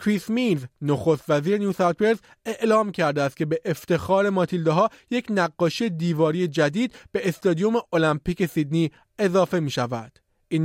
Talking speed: 140 wpm